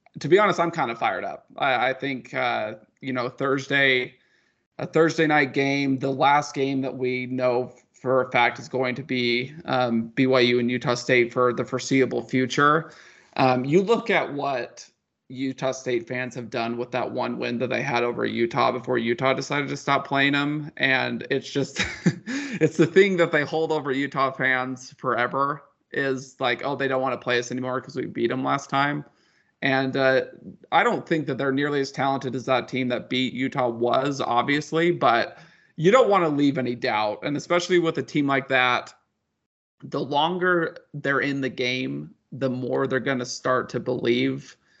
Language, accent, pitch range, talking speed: English, American, 125-140 Hz, 190 wpm